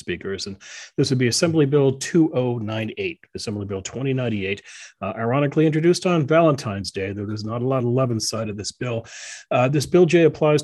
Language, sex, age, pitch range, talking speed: English, male, 40-59, 110-150 Hz, 185 wpm